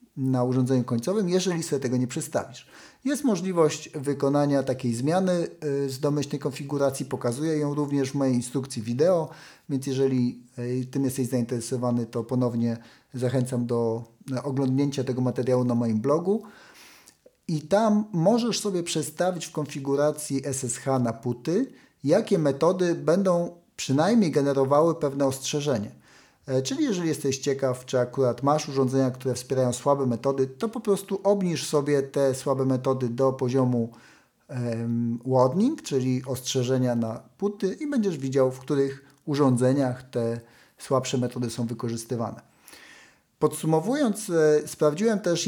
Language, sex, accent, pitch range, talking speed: Polish, male, native, 125-155 Hz, 125 wpm